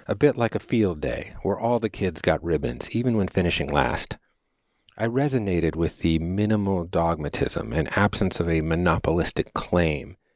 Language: English